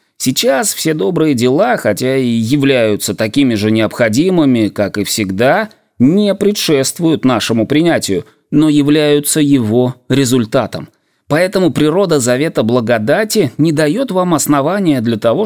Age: 20-39